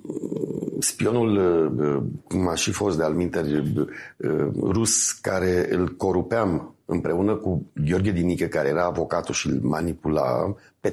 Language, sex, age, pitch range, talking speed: Romanian, male, 50-69, 80-105 Hz, 120 wpm